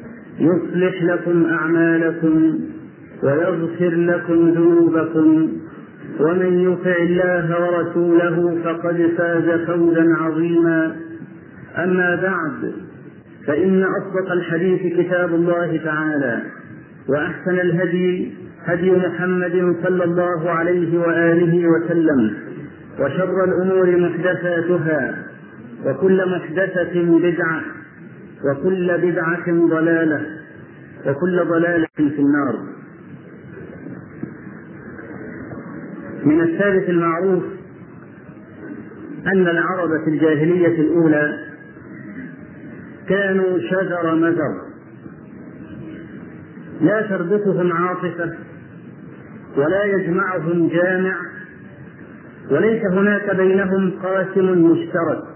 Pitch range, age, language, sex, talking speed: 165-180 Hz, 50-69, Arabic, male, 70 wpm